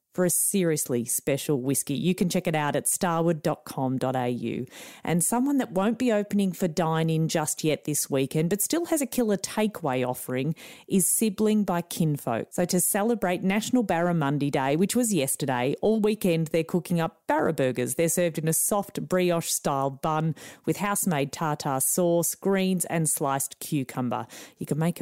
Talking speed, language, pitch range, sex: 170 wpm, English, 150-195 Hz, female